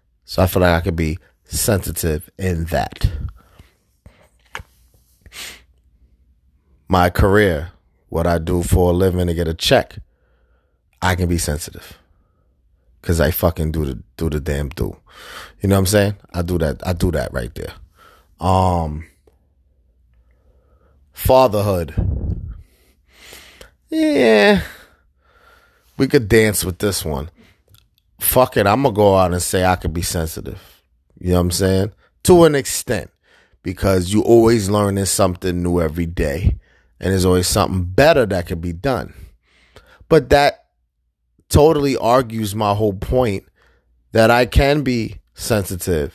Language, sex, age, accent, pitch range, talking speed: English, male, 30-49, American, 80-105 Hz, 140 wpm